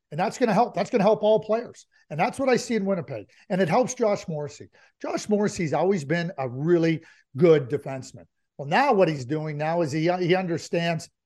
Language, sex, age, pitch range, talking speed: English, male, 50-69, 175-270 Hz, 220 wpm